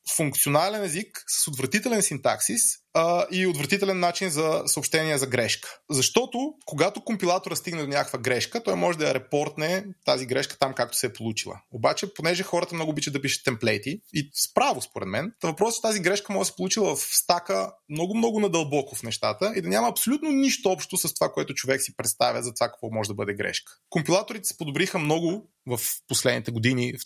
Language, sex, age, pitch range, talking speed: Bulgarian, male, 20-39, 135-190 Hz, 185 wpm